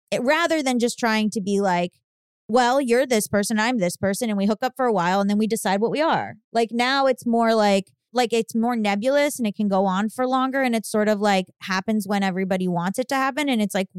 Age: 20-39